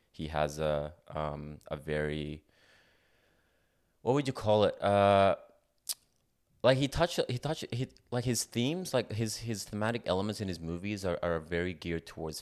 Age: 20-39